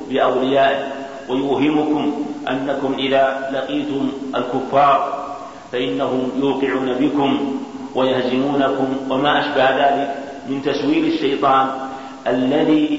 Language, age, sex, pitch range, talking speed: Arabic, 50-69, male, 135-145 Hz, 80 wpm